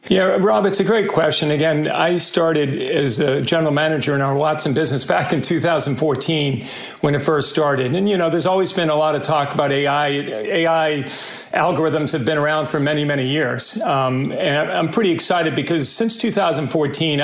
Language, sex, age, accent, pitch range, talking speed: English, male, 50-69, American, 145-170 Hz, 185 wpm